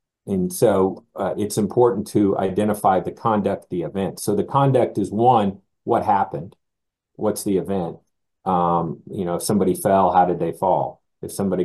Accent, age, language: American, 50-69, English